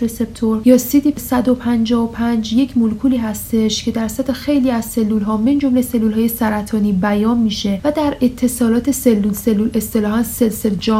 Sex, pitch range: female, 210-255 Hz